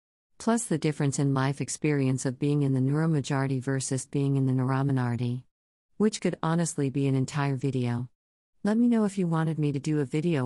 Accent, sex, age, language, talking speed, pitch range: American, female, 50-69, English, 195 wpm, 125-160 Hz